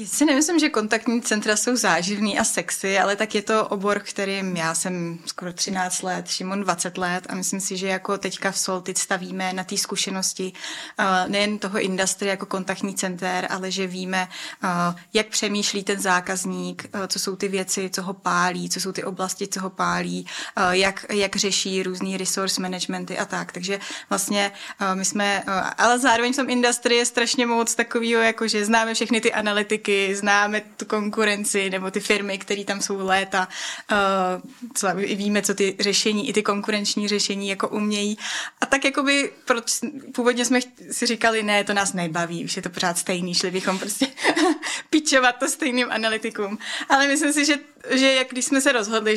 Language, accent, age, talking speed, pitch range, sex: Czech, native, 20-39, 185 wpm, 190-235 Hz, female